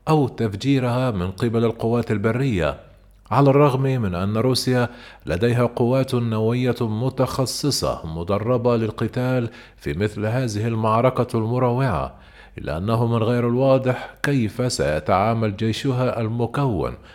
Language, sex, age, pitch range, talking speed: Arabic, male, 40-59, 110-130 Hz, 110 wpm